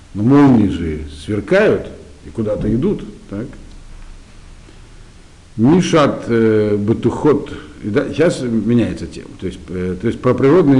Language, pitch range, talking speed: Russian, 85-120 Hz, 105 wpm